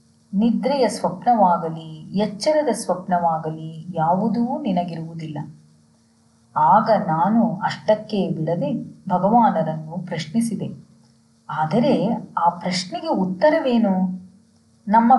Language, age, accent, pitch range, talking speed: Kannada, 30-49, native, 175-240 Hz, 65 wpm